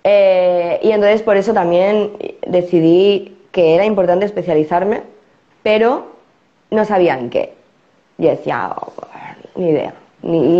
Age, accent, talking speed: 20-39, Spanish, 125 wpm